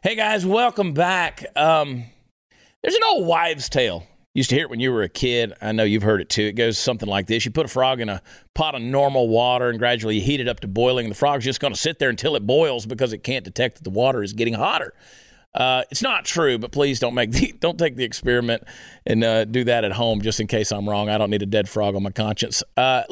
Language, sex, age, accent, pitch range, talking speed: English, male, 40-59, American, 120-175 Hz, 265 wpm